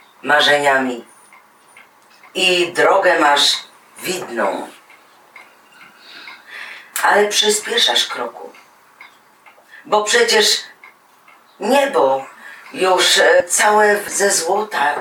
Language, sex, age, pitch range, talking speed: Polish, female, 40-59, 170-215 Hz, 60 wpm